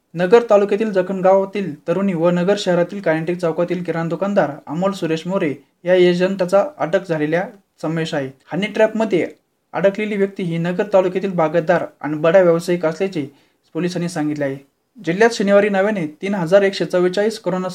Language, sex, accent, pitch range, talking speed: Marathi, male, native, 160-195 Hz, 135 wpm